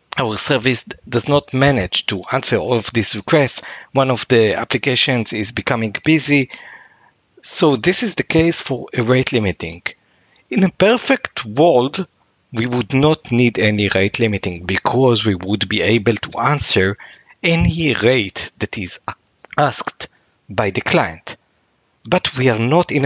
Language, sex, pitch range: English, male, 110-145 Hz